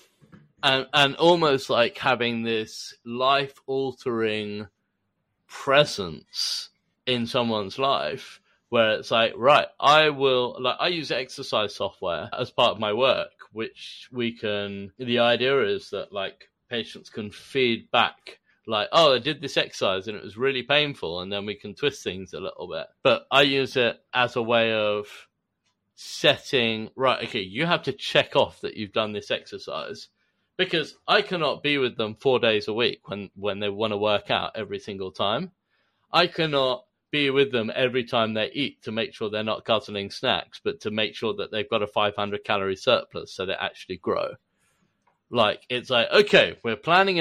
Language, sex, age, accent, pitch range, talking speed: English, male, 30-49, British, 110-140 Hz, 175 wpm